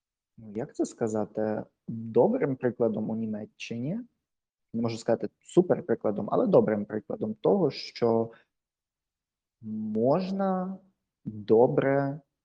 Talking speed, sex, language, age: 90 wpm, male, Ukrainian, 20-39